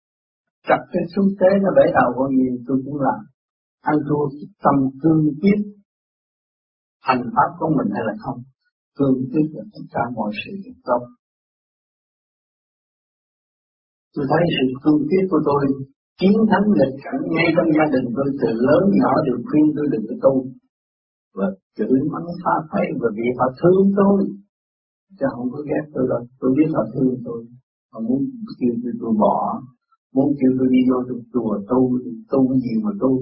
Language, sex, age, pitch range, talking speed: Vietnamese, male, 50-69, 125-175 Hz, 175 wpm